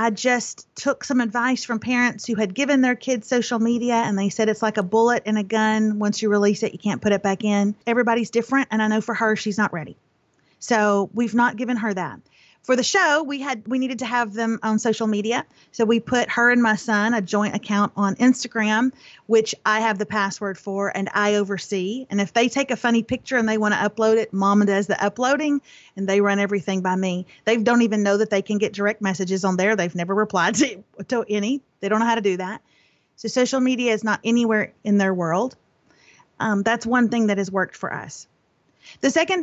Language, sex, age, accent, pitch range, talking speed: English, female, 40-59, American, 205-245 Hz, 230 wpm